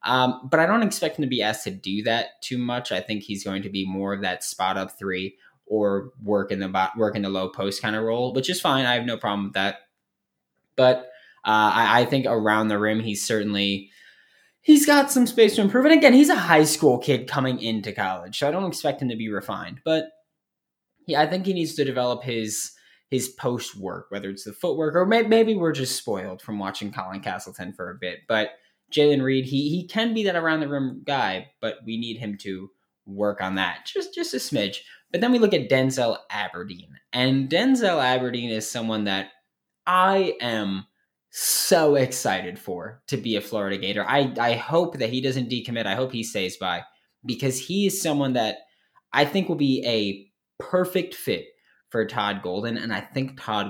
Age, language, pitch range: 10-29, English, 105-150 Hz